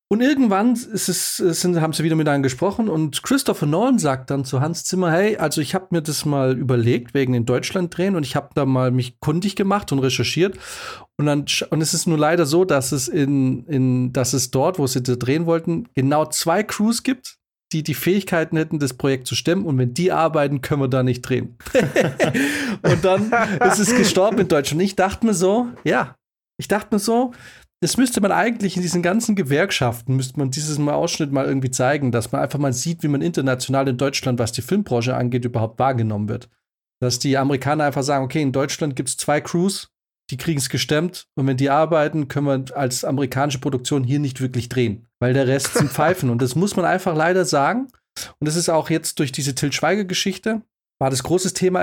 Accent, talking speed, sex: German, 215 wpm, male